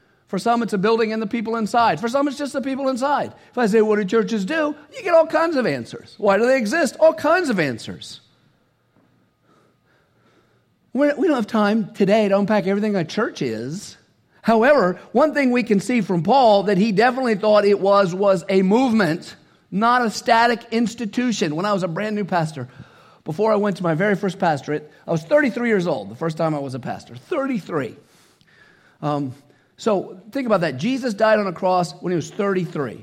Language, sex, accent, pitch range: English, male, American, 180-250 Hz